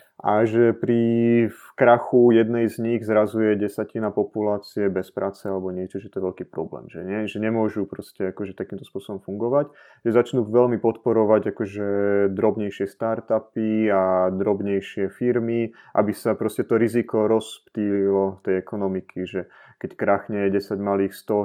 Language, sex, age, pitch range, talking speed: Slovak, male, 30-49, 95-110 Hz, 145 wpm